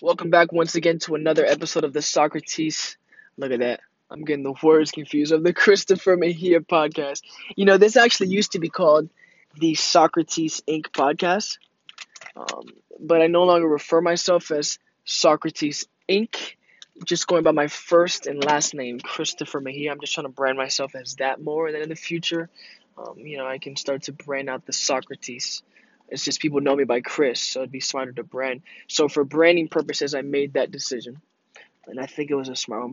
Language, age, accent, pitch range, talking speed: English, 20-39, American, 140-170 Hz, 200 wpm